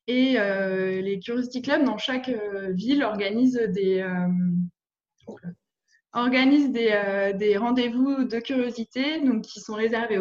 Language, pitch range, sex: French, 200-250 Hz, female